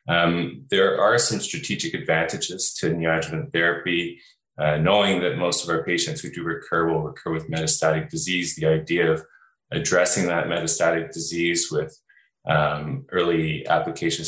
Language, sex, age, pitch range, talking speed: English, male, 20-39, 80-85 Hz, 145 wpm